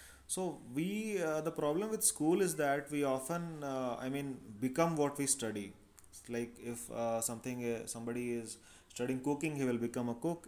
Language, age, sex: English, 30-49, male